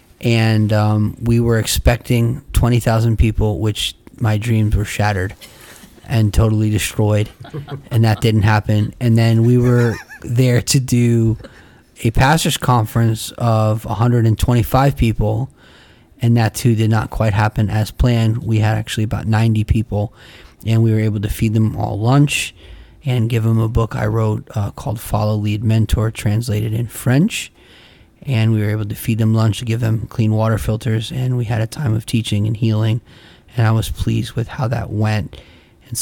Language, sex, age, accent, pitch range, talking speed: English, male, 30-49, American, 110-120 Hz, 170 wpm